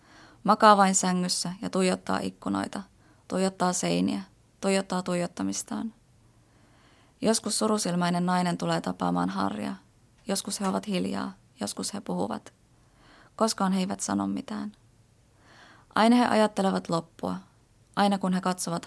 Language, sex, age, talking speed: Finnish, female, 20-39, 115 wpm